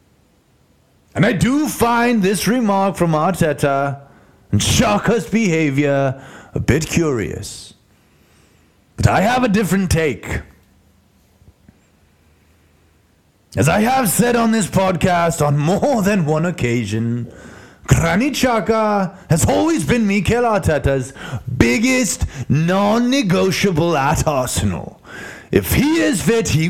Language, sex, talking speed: English, male, 105 wpm